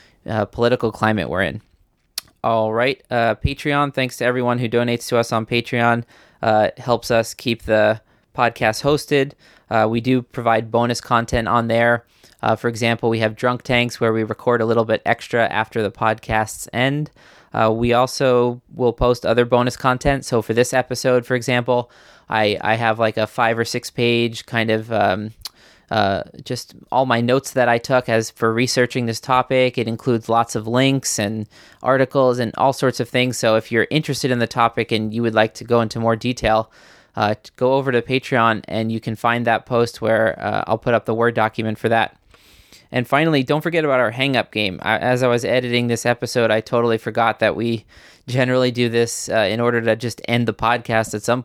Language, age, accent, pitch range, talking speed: English, 20-39, American, 110-125 Hz, 200 wpm